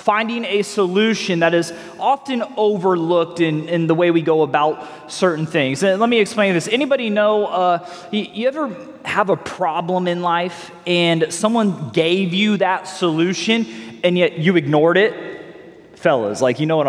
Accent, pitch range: American, 160-200 Hz